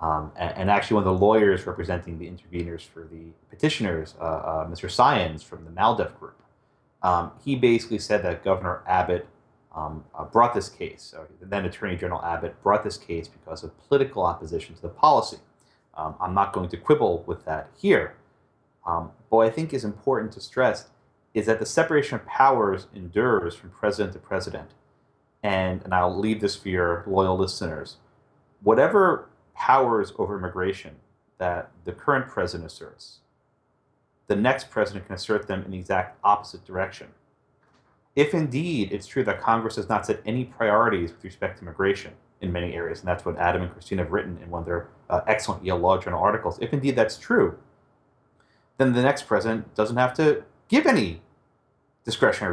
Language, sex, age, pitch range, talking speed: English, male, 30-49, 85-110 Hz, 180 wpm